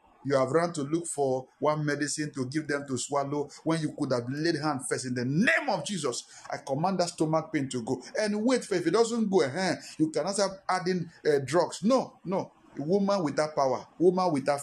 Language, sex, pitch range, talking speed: English, male, 140-190 Hz, 220 wpm